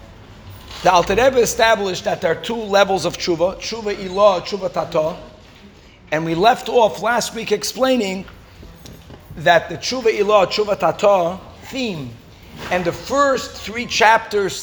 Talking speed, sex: 135 wpm, male